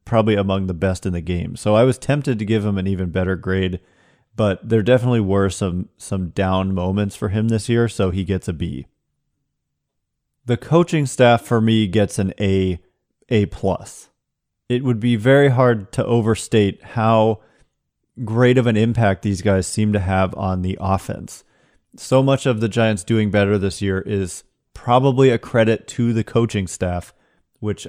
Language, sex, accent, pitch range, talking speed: English, male, American, 95-115 Hz, 180 wpm